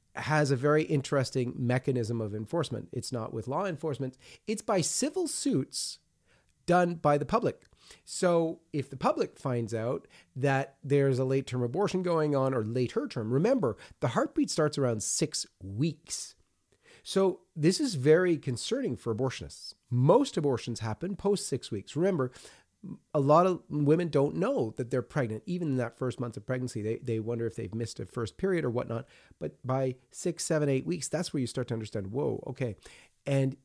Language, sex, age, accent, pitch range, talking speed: English, male, 40-59, American, 120-155 Hz, 175 wpm